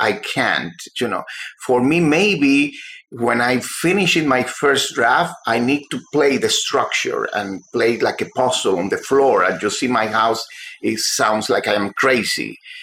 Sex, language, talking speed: male, English, 180 wpm